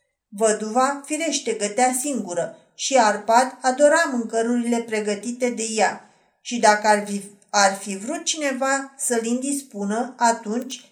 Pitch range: 225-270 Hz